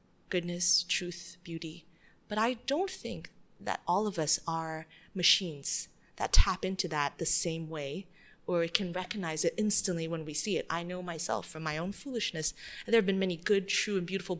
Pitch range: 170-205 Hz